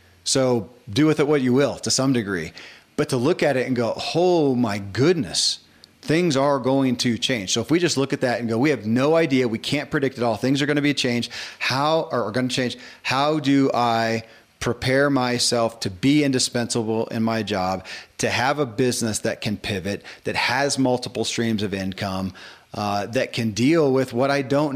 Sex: male